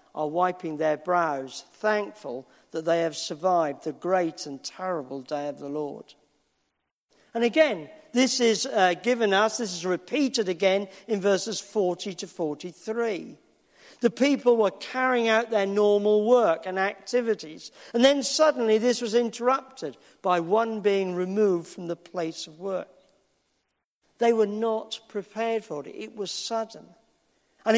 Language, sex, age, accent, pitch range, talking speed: English, male, 50-69, British, 180-230 Hz, 145 wpm